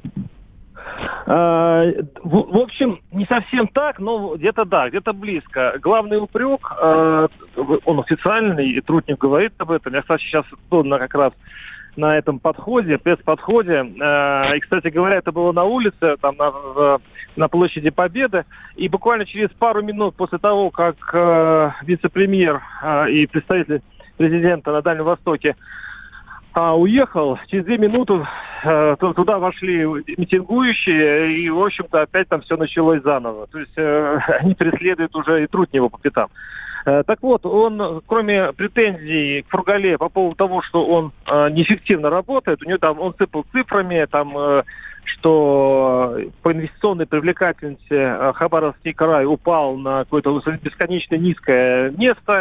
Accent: native